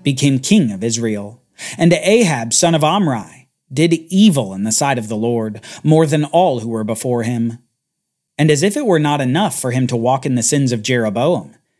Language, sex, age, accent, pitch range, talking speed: English, male, 40-59, American, 115-165 Hz, 205 wpm